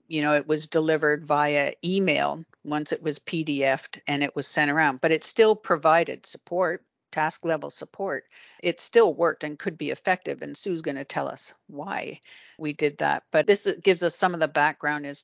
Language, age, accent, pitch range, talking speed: English, 50-69, American, 145-170 Hz, 195 wpm